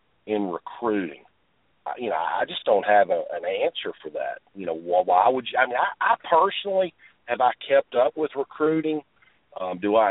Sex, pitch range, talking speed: male, 100-140 Hz, 185 wpm